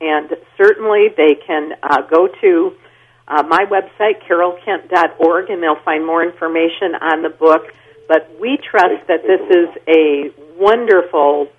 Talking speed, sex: 140 wpm, female